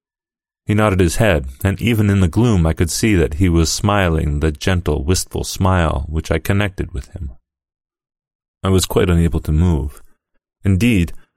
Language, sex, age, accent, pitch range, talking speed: English, male, 40-59, American, 75-100 Hz, 170 wpm